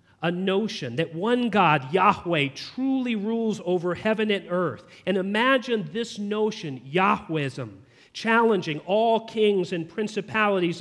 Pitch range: 155-210 Hz